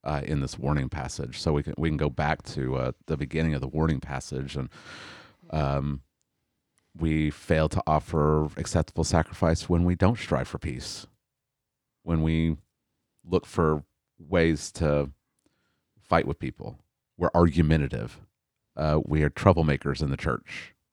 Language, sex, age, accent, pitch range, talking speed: English, male, 40-59, American, 75-85 Hz, 150 wpm